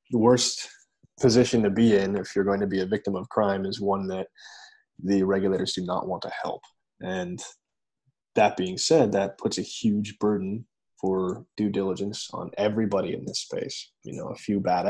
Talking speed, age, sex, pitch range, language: 190 wpm, 20-39, male, 95-110 Hz, English